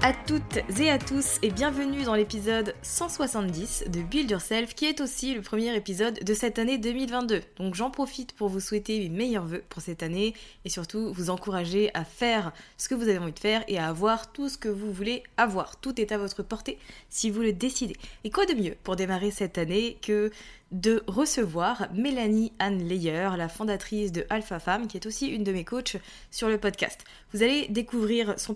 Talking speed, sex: 205 wpm, female